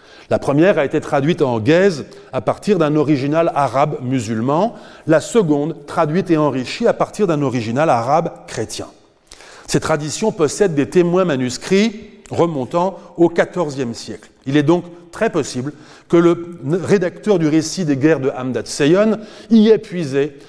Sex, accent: male, French